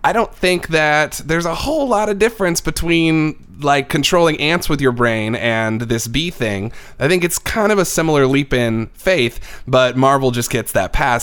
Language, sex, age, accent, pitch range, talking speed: English, male, 20-39, American, 100-125 Hz, 200 wpm